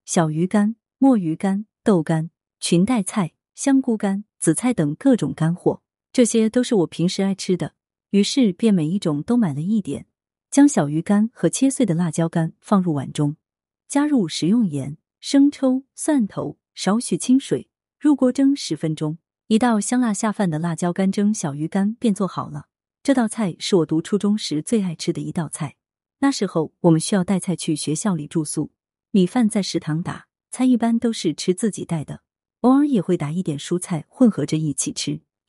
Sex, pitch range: female, 165-230 Hz